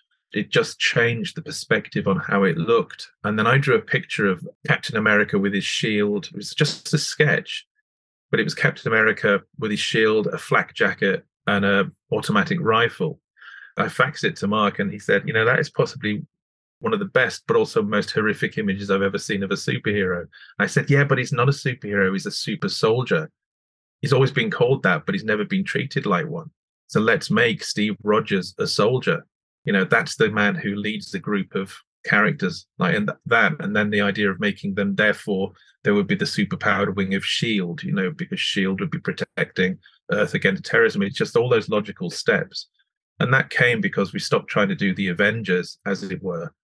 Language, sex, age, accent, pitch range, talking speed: English, male, 30-49, British, 100-160 Hz, 205 wpm